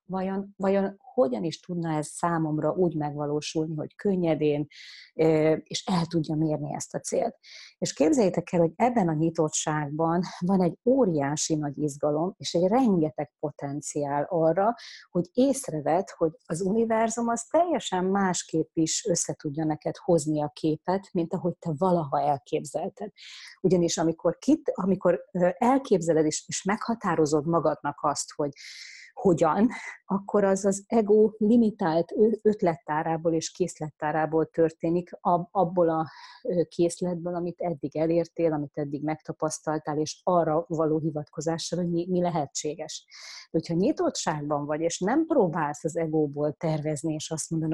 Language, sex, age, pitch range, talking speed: Hungarian, female, 30-49, 155-190 Hz, 130 wpm